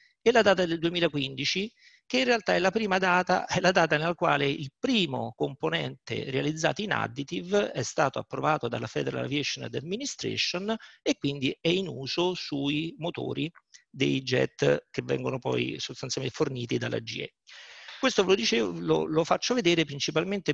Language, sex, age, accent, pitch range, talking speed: Italian, male, 50-69, native, 135-185 Hz, 160 wpm